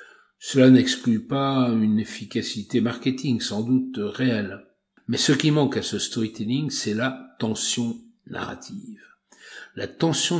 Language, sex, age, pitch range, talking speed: French, male, 60-79, 115-145 Hz, 125 wpm